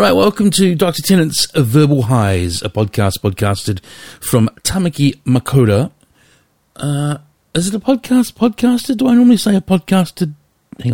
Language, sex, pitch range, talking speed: English, male, 105-150 Hz, 145 wpm